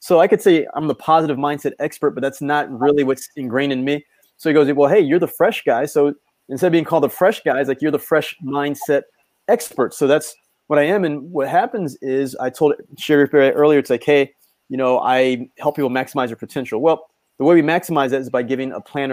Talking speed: 240 wpm